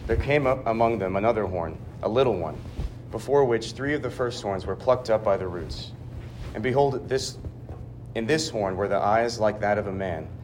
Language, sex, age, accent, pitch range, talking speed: English, male, 30-49, American, 105-120 Hz, 215 wpm